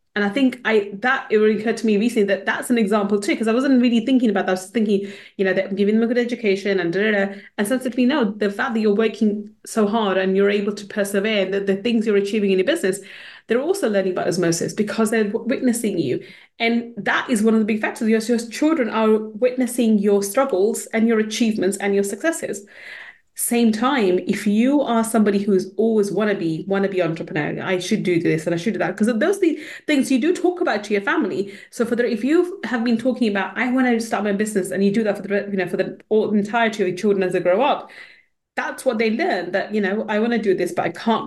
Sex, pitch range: female, 195-245 Hz